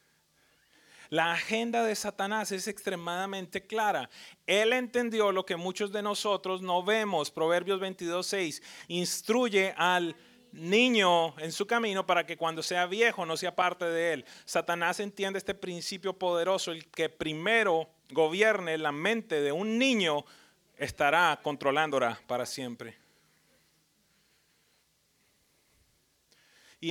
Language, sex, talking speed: English, male, 120 wpm